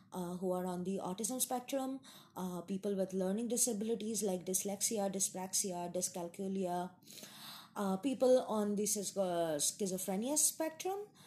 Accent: Indian